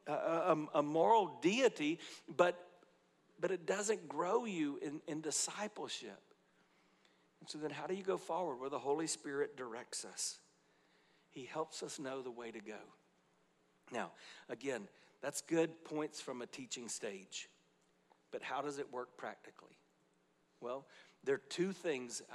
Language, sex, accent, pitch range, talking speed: English, male, American, 120-155 Hz, 150 wpm